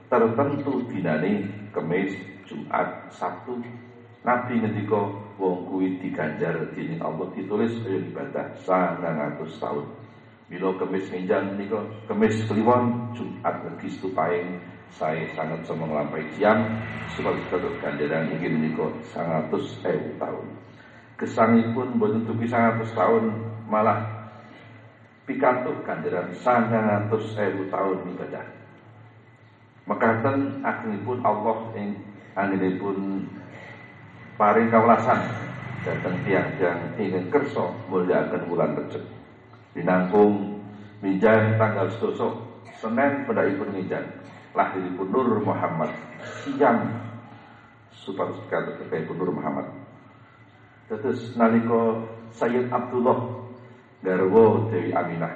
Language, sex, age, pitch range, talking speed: Indonesian, male, 50-69, 95-115 Hz, 105 wpm